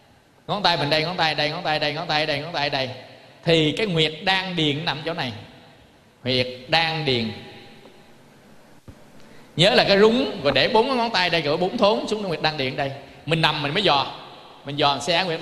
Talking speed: 240 wpm